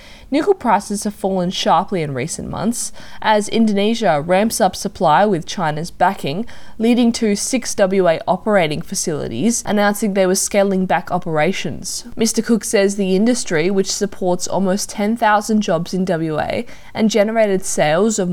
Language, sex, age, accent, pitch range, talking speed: English, female, 20-39, Australian, 180-225 Hz, 145 wpm